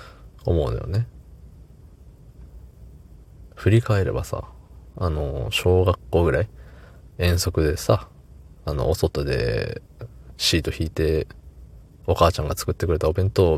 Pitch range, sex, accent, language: 75-105 Hz, male, native, Japanese